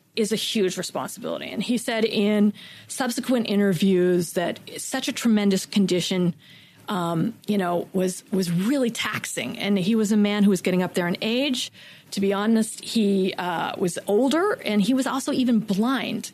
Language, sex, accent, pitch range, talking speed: English, female, American, 185-230 Hz, 175 wpm